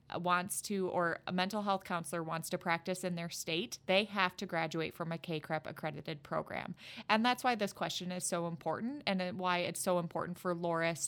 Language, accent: English, American